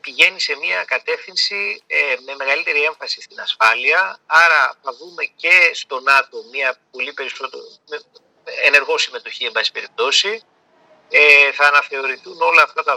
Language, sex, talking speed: Greek, male, 140 wpm